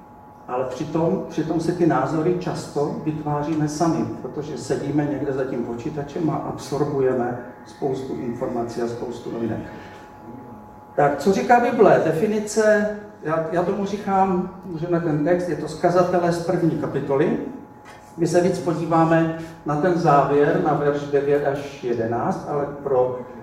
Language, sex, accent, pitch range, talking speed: Czech, male, native, 140-170 Hz, 140 wpm